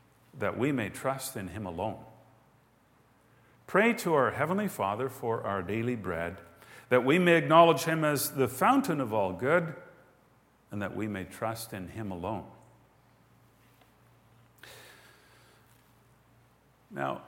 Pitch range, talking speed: 110-145 Hz, 125 wpm